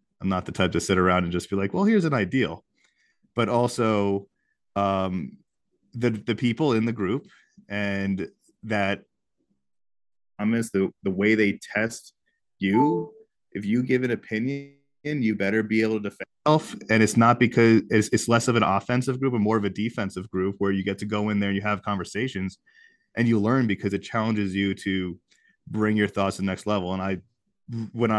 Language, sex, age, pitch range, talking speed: English, male, 20-39, 95-115 Hz, 195 wpm